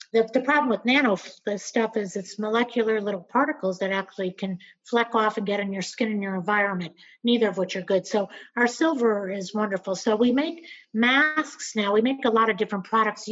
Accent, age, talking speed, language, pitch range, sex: American, 50-69, 205 wpm, English, 200-250 Hz, female